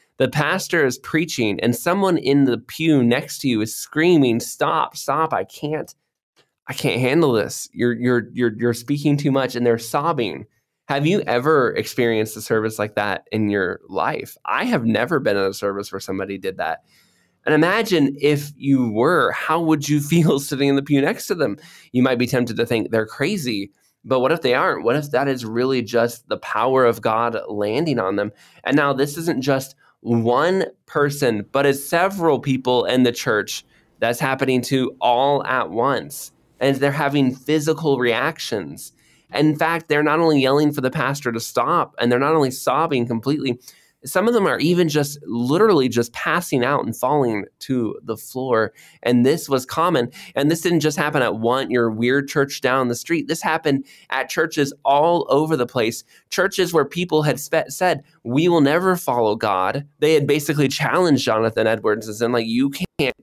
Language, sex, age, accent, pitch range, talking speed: English, male, 20-39, American, 120-150 Hz, 190 wpm